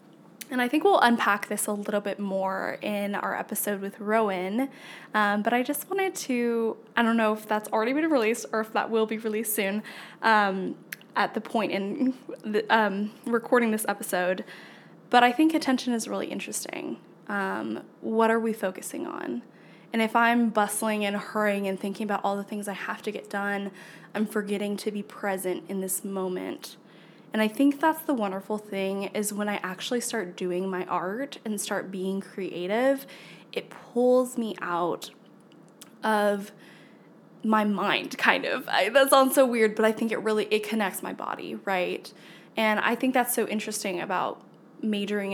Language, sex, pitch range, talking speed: English, female, 200-235 Hz, 175 wpm